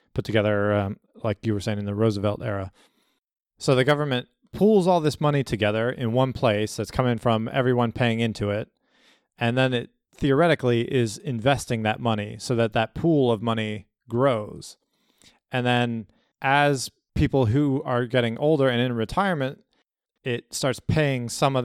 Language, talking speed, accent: English, 165 wpm, American